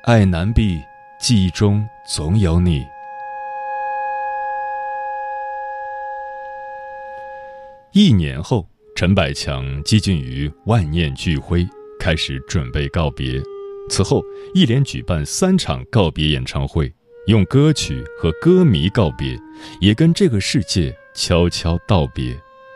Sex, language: male, Chinese